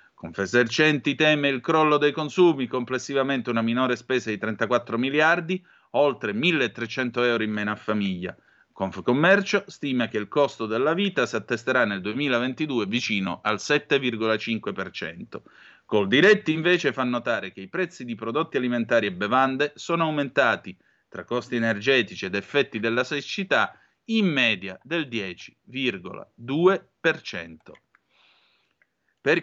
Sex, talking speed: male, 125 wpm